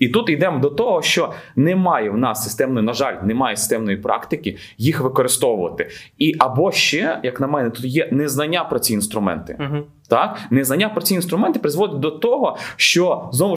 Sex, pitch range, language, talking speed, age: male, 135-180 Hz, Ukrainian, 170 wpm, 20-39